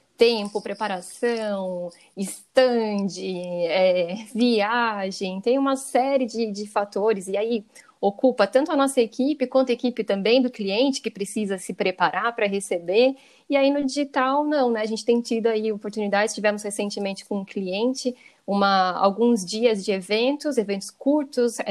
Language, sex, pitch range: Portuguese, female, 195-245 Hz